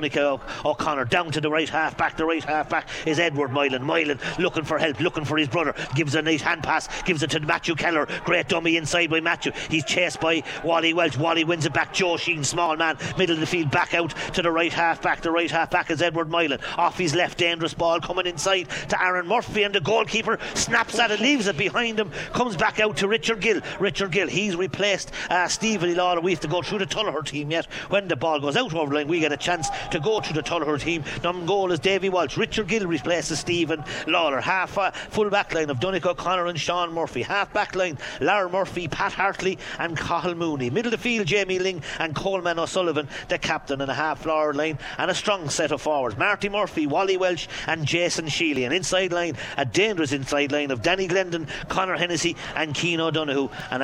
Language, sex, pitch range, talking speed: English, male, 155-185 Hz, 225 wpm